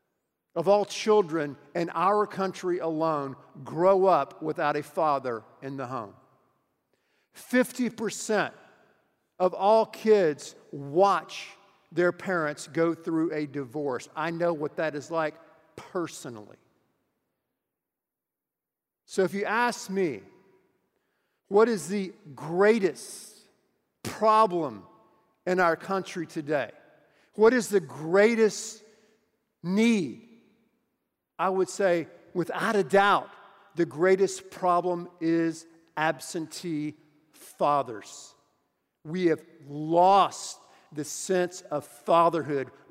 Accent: American